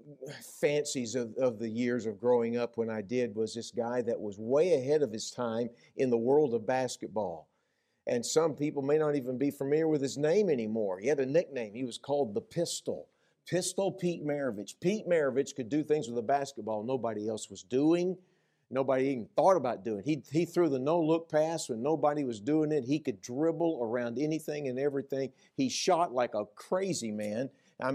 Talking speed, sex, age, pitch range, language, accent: 200 wpm, male, 50-69, 125-175 Hz, English, American